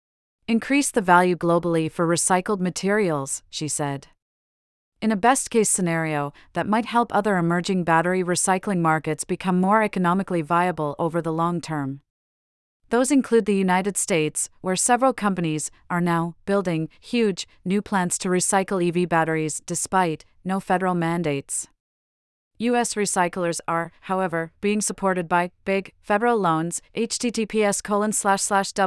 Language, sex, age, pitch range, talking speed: English, female, 30-49, 165-200 Hz, 135 wpm